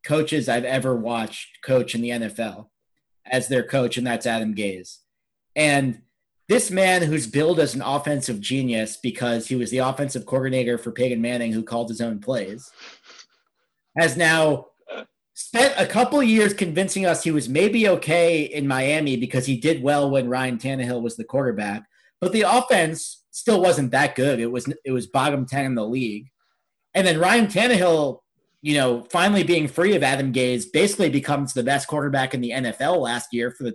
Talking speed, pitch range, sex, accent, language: 180 wpm, 125-170 Hz, male, American, English